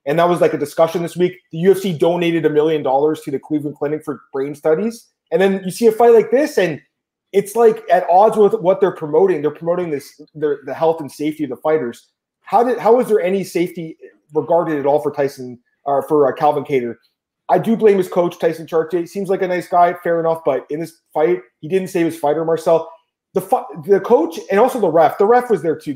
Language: English